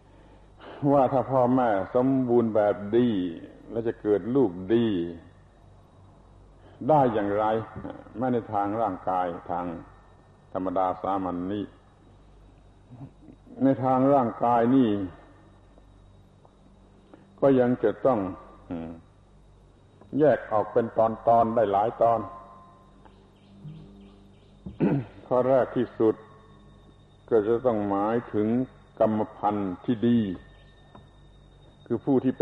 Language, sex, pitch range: Thai, male, 100-120 Hz